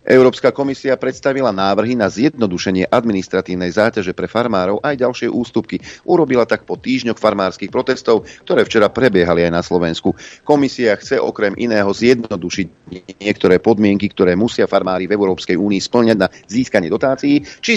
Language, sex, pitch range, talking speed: Slovak, male, 95-125 Hz, 145 wpm